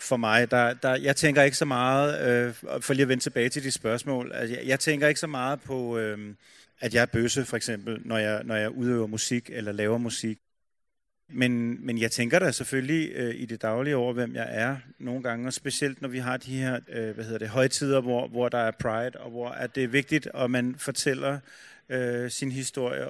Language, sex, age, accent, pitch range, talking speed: Danish, male, 30-49, native, 120-140 Hz, 220 wpm